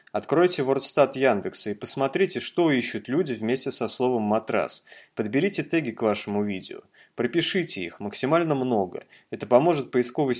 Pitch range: 110-140 Hz